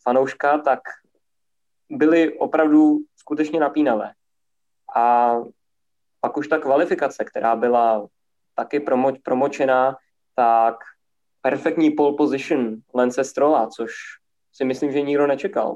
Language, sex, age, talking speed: Czech, male, 20-39, 105 wpm